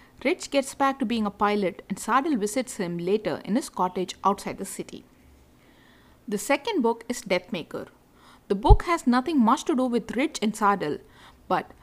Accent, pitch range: Indian, 200-260 Hz